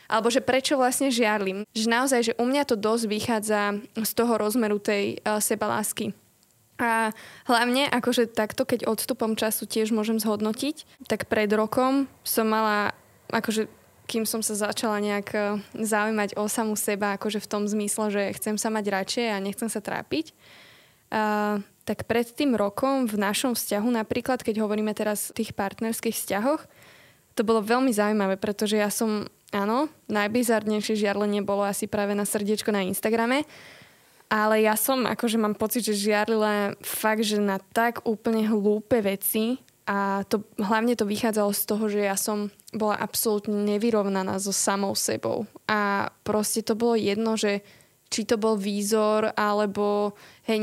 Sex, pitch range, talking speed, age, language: female, 210-230 Hz, 160 wpm, 20-39, Slovak